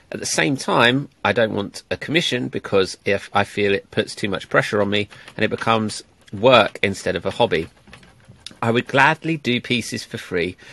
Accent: British